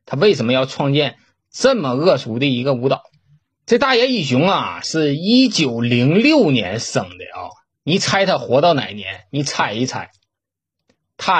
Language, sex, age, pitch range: Chinese, male, 20-39, 115-170 Hz